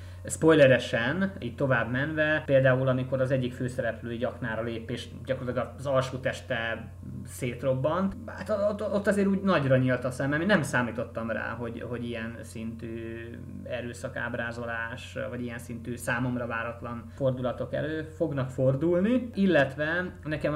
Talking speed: 135 wpm